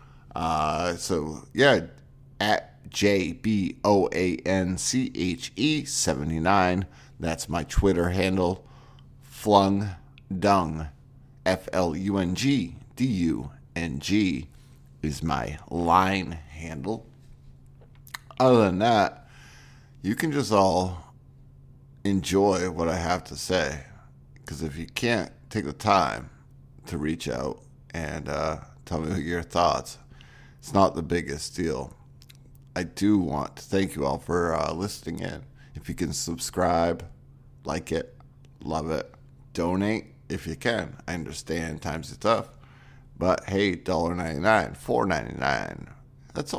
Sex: male